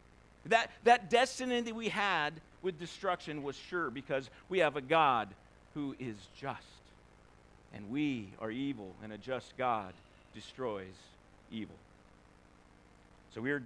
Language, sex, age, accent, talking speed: English, male, 50-69, American, 135 wpm